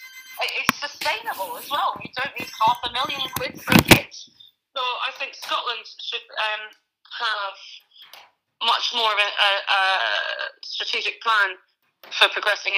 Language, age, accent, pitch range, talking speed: English, 30-49, British, 195-255 Hz, 140 wpm